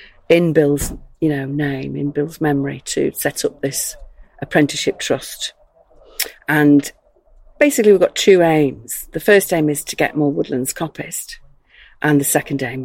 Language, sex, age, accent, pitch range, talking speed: English, female, 40-59, British, 145-175 Hz, 155 wpm